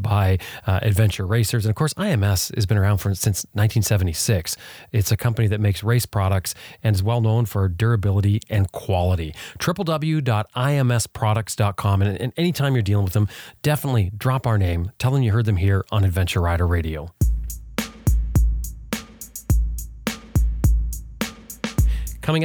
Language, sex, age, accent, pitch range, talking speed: English, male, 30-49, American, 100-120 Hz, 140 wpm